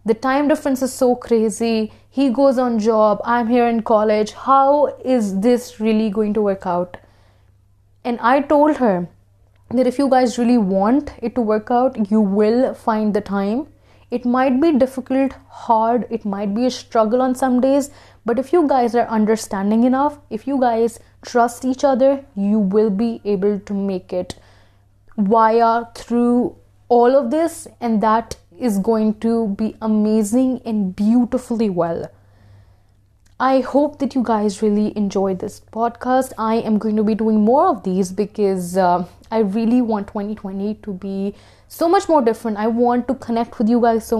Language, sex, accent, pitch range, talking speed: Hindi, female, native, 205-255 Hz, 175 wpm